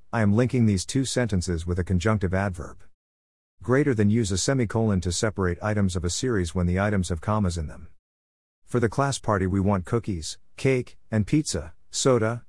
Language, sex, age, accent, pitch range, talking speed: English, male, 50-69, American, 90-115 Hz, 185 wpm